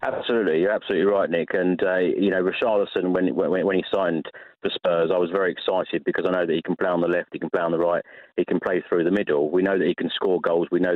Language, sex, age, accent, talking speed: English, male, 30-49, British, 285 wpm